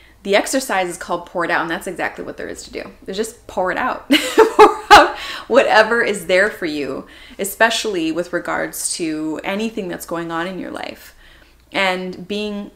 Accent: American